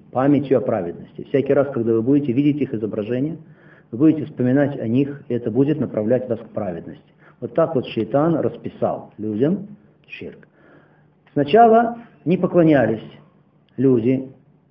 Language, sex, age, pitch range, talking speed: Russian, male, 50-69, 120-165 Hz, 140 wpm